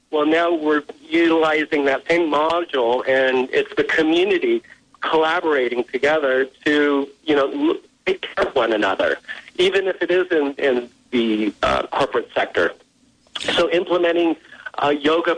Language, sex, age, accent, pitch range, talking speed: English, male, 50-69, American, 130-165 Hz, 135 wpm